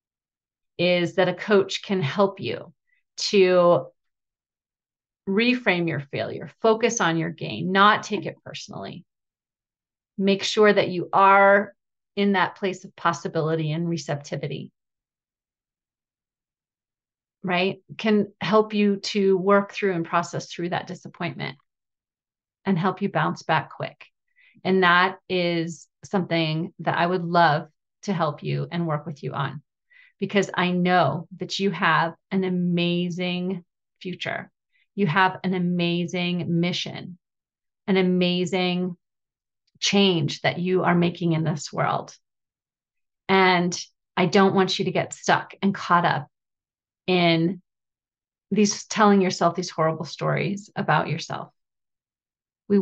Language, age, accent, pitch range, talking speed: English, 30-49, American, 170-195 Hz, 125 wpm